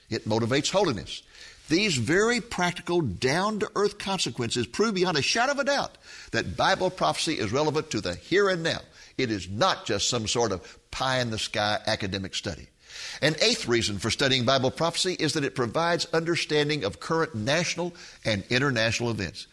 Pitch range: 110-160 Hz